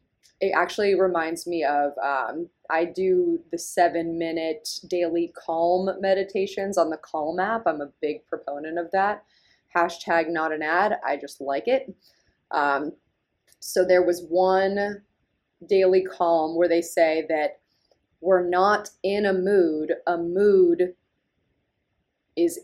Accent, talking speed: American, 135 wpm